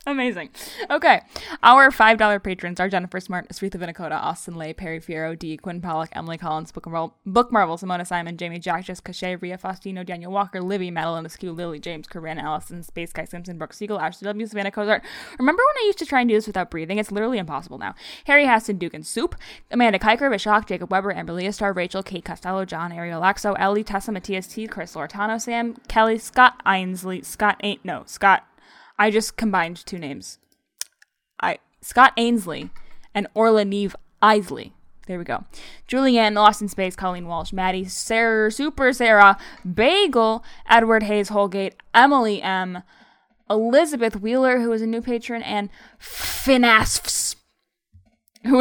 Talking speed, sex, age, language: 175 wpm, female, 10-29, English